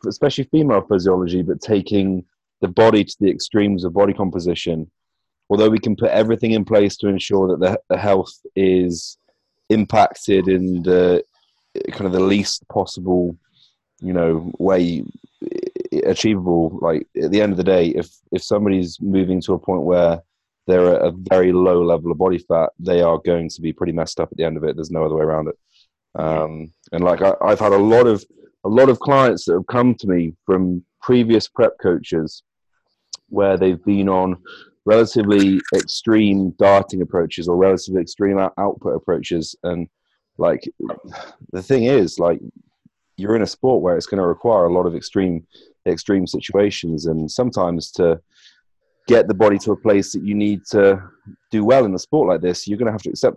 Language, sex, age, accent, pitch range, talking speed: English, male, 30-49, British, 85-100 Hz, 185 wpm